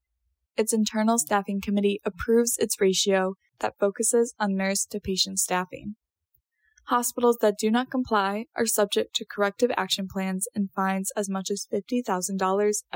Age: 10-29